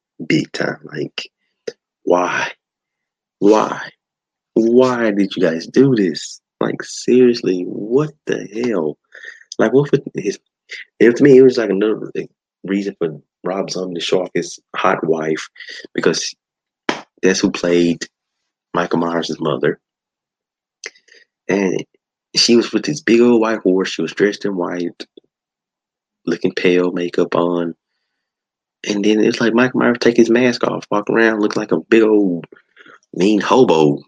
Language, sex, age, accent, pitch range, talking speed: English, male, 30-49, American, 90-120 Hz, 145 wpm